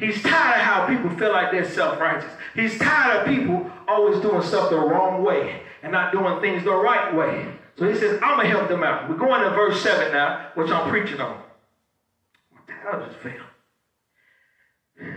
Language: English